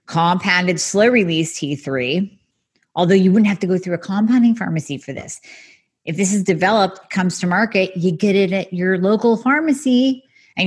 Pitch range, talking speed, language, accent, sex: 160-200 Hz, 170 wpm, English, American, female